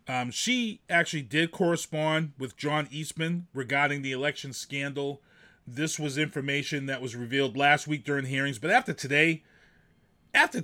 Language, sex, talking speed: English, male, 145 wpm